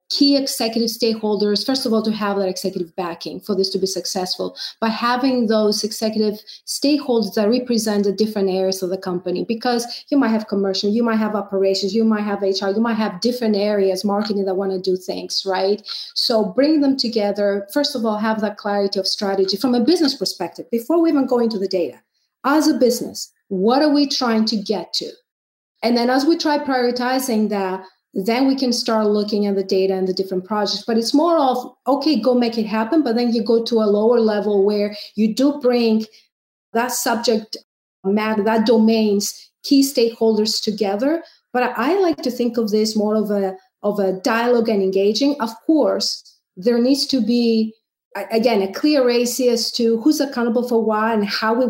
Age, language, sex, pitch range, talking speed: 40-59, English, female, 205-250 Hz, 195 wpm